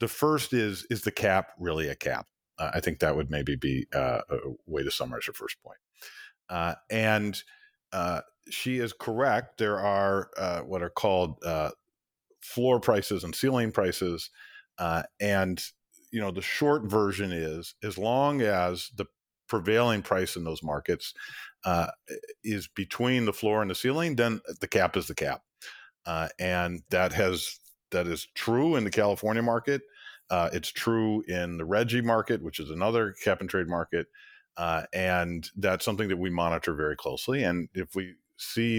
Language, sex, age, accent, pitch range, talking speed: English, male, 50-69, American, 90-125 Hz, 170 wpm